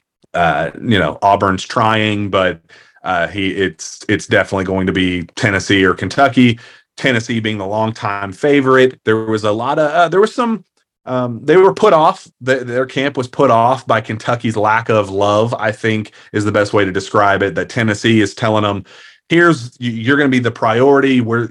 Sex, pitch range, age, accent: male, 100-120 Hz, 30-49, American